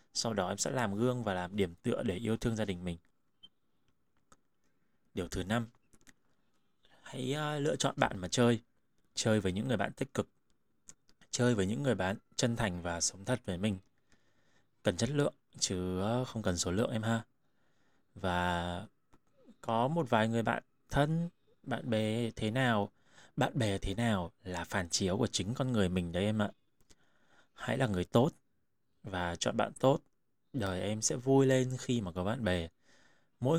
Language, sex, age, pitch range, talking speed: Vietnamese, male, 20-39, 95-125 Hz, 175 wpm